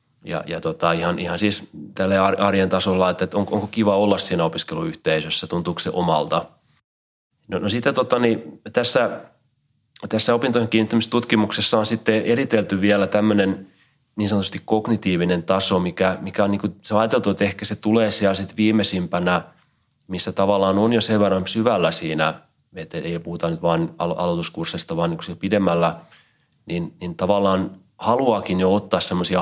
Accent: native